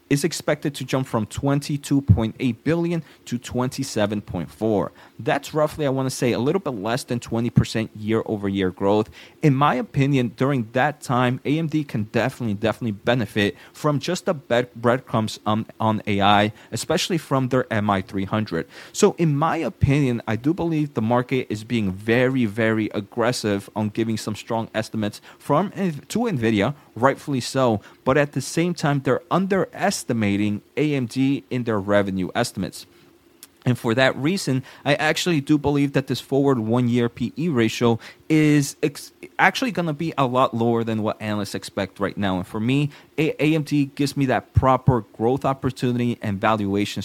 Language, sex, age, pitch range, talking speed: English, male, 30-49, 110-140 Hz, 170 wpm